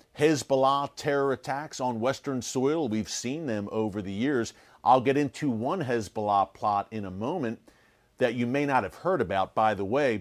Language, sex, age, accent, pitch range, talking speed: English, male, 40-59, American, 115-145 Hz, 180 wpm